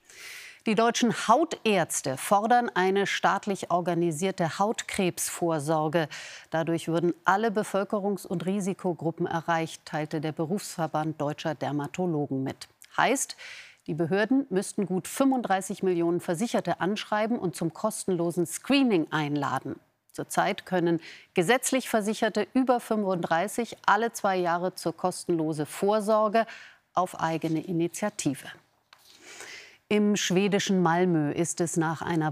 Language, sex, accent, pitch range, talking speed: German, female, German, 160-200 Hz, 105 wpm